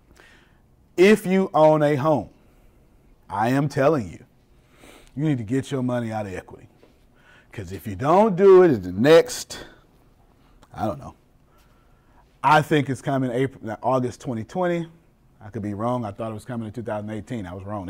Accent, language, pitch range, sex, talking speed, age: American, English, 120-150 Hz, male, 170 wpm, 30-49